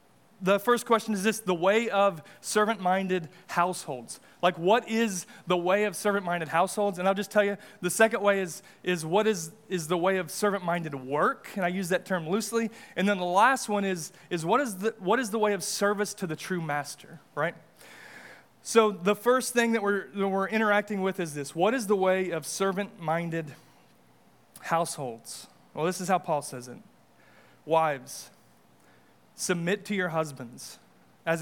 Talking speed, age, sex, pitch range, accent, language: 180 wpm, 30-49, male, 160-200 Hz, American, English